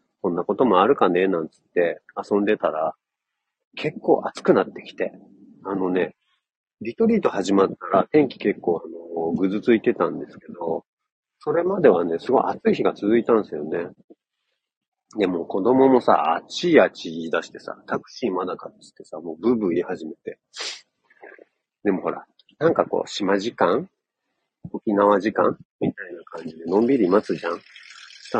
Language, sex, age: Japanese, male, 40-59